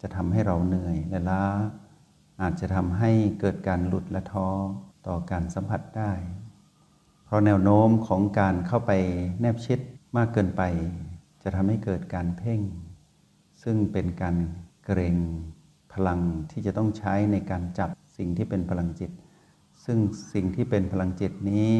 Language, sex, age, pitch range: Thai, male, 60-79, 90-110 Hz